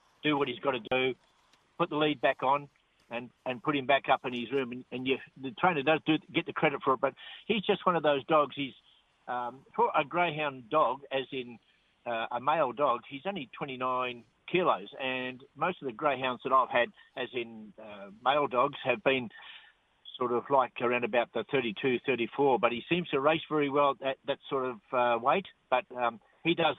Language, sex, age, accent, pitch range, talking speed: English, male, 60-79, Australian, 125-155 Hz, 210 wpm